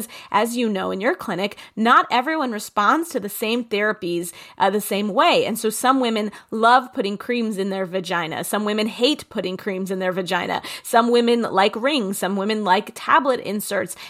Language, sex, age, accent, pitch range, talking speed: English, female, 30-49, American, 195-240 Hz, 185 wpm